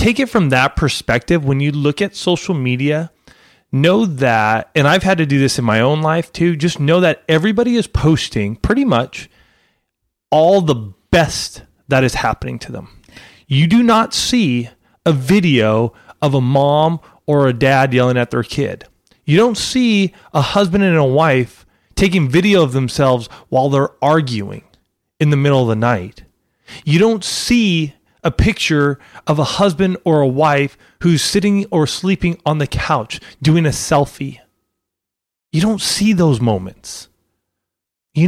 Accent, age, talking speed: American, 30-49, 165 wpm